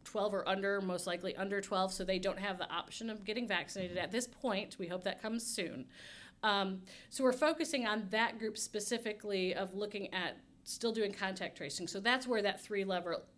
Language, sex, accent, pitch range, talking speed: English, female, American, 180-220 Hz, 200 wpm